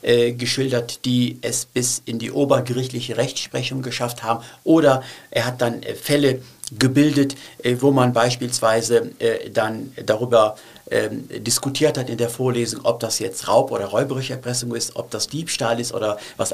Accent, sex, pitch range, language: German, male, 120-135 Hz, German